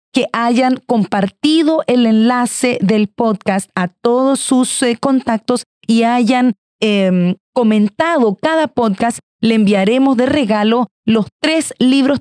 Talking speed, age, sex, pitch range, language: 125 wpm, 40-59, female, 210-260 Hz, Spanish